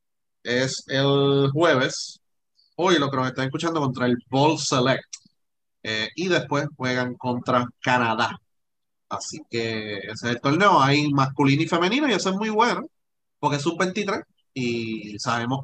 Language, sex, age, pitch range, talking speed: Spanish, male, 30-49, 120-140 Hz, 155 wpm